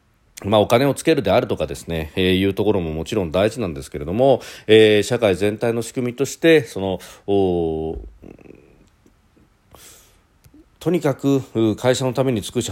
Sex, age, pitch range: male, 40-59, 90-125 Hz